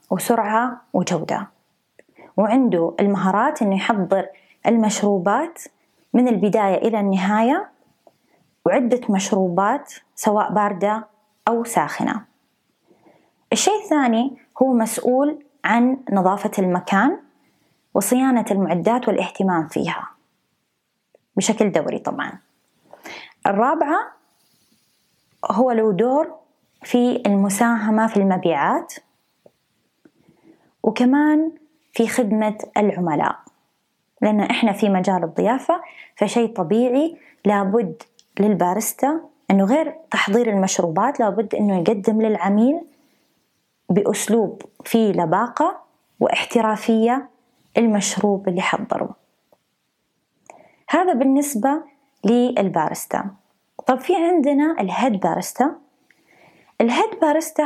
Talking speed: 80 wpm